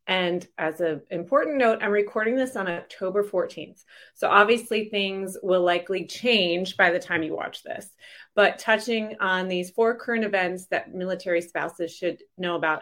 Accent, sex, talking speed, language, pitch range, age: American, female, 170 wpm, English, 170-210 Hz, 30-49